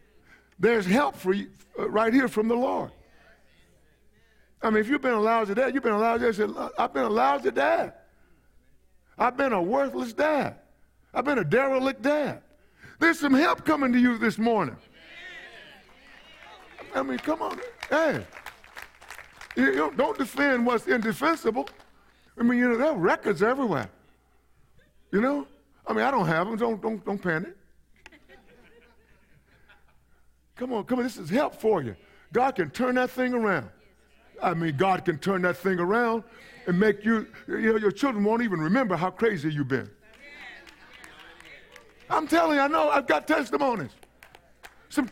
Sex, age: male, 50-69